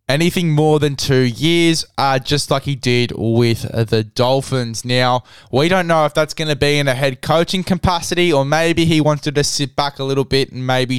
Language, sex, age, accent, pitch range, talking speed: English, male, 10-29, Australian, 125-155 Hz, 215 wpm